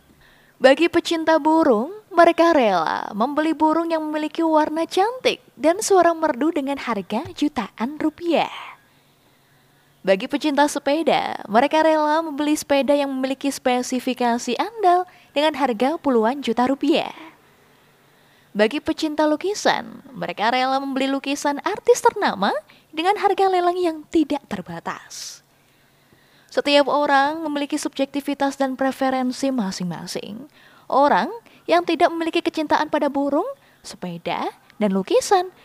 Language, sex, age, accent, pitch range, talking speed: Indonesian, female, 20-39, native, 245-330 Hz, 110 wpm